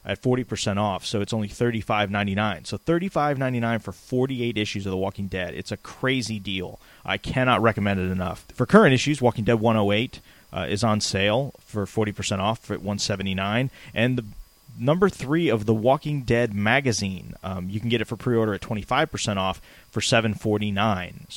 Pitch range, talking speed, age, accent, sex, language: 100-125 Hz, 170 wpm, 30-49, American, male, English